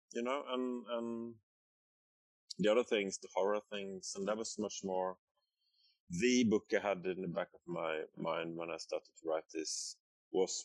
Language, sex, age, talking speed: English, male, 30-49, 180 wpm